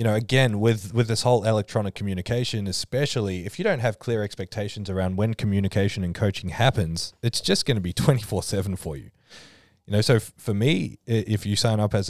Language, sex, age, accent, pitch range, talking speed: English, male, 20-39, Australian, 95-115 Hz, 205 wpm